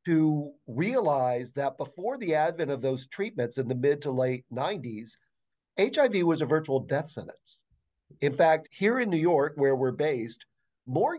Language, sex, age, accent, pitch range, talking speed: English, male, 50-69, American, 125-160 Hz, 165 wpm